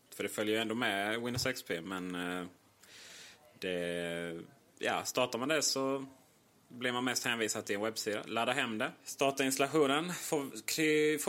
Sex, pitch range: male, 110-140 Hz